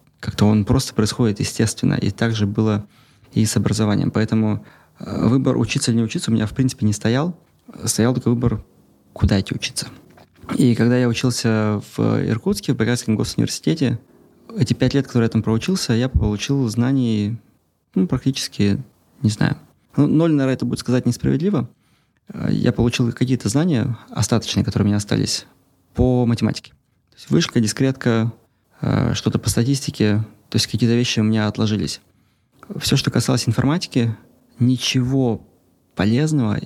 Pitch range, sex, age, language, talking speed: 105-130 Hz, male, 20-39, Russian, 150 wpm